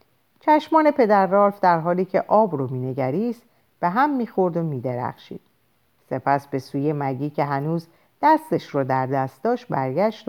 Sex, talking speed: female, 145 wpm